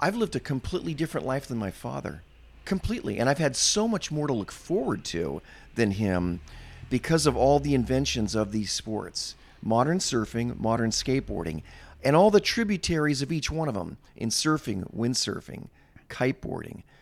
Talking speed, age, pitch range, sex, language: 165 wpm, 40-59, 110-155 Hz, male, English